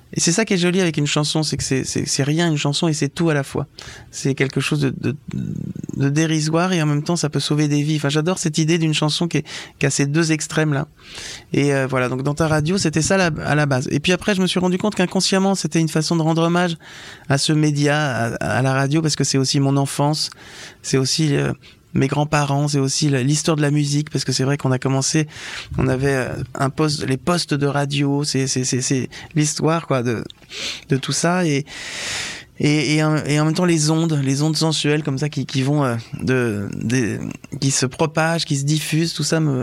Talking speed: 240 wpm